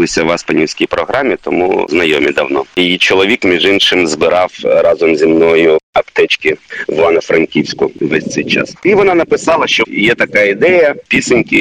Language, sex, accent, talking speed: Ukrainian, male, native, 155 wpm